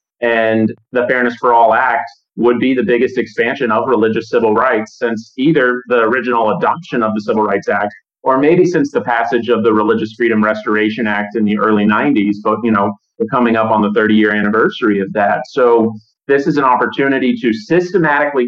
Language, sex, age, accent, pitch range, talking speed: English, male, 30-49, American, 110-130 Hz, 195 wpm